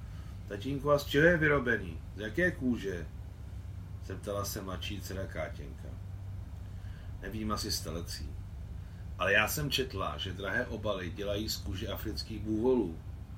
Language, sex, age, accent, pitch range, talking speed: Czech, male, 40-59, native, 90-105 Hz, 130 wpm